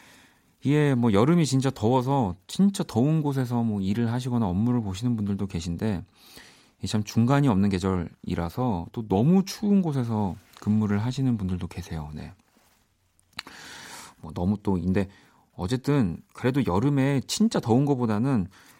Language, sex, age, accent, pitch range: Korean, male, 40-59, native, 95-135 Hz